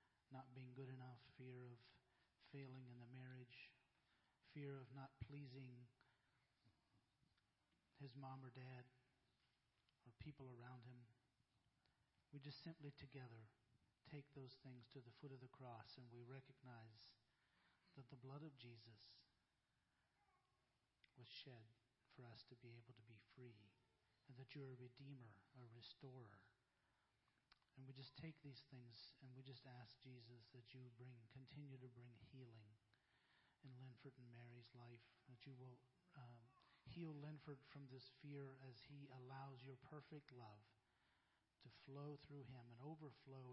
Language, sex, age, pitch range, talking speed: English, male, 40-59, 120-135 Hz, 145 wpm